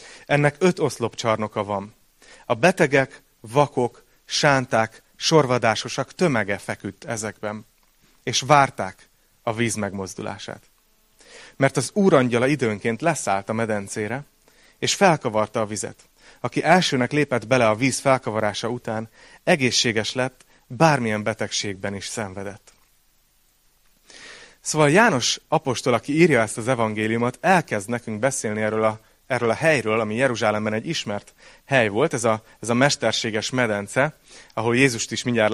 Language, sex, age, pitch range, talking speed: Hungarian, male, 30-49, 110-130 Hz, 125 wpm